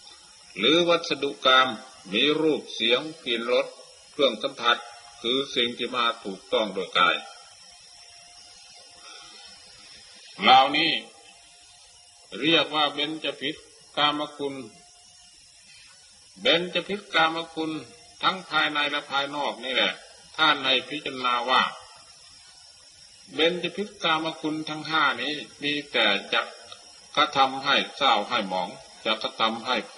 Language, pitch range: Thai, 130-160 Hz